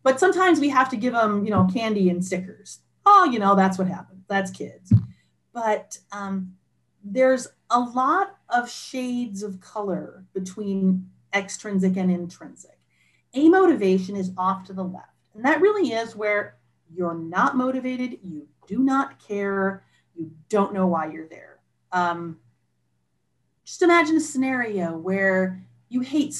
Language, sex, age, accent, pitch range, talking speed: English, female, 30-49, American, 185-250 Hz, 150 wpm